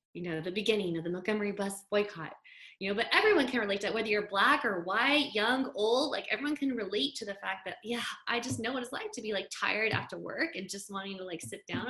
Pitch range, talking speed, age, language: 175-220 Hz, 260 wpm, 20-39, English